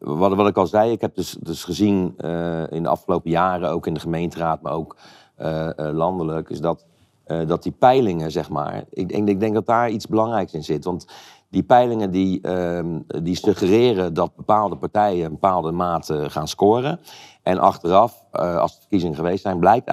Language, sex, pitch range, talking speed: Dutch, male, 80-95 Hz, 195 wpm